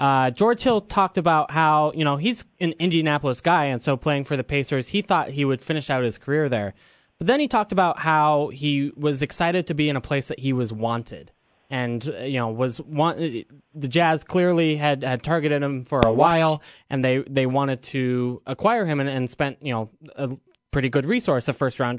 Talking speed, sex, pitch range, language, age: 215 wpm, male, 125-155 Hz, English, 10-29